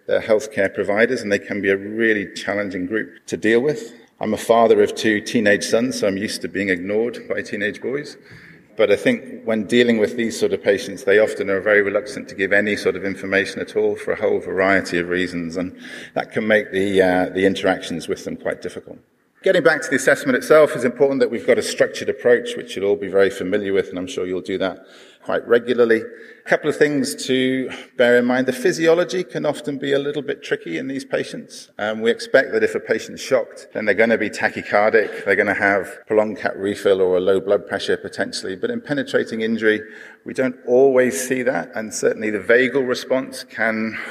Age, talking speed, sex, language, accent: 40-59, 220 wpm, male, English, British